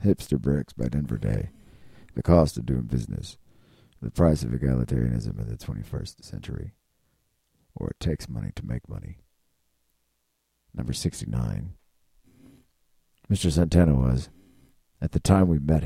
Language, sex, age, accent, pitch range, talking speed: English, male, 50-69, American, 70-85 Hz, 130 wpm